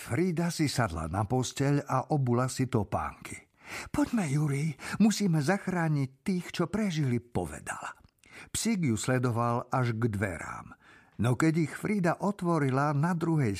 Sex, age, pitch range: male, 50-69, 115-175 Hz